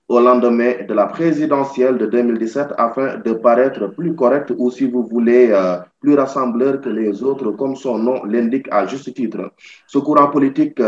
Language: French